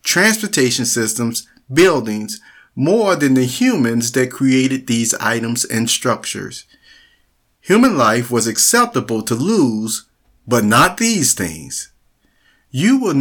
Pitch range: 105-145 Hz